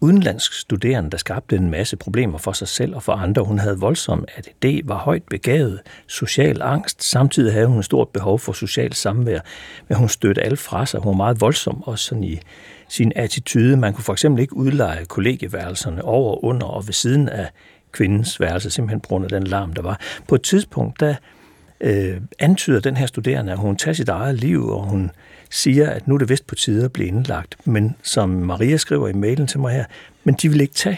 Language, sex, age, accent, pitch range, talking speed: Danish, male, 60-79, native, 100-135 Hz, 215 wpm